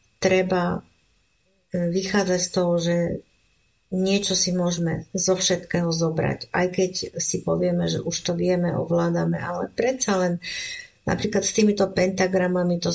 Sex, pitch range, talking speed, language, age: female, 170-185 Hz, 130 wpm, Slovak, 50-69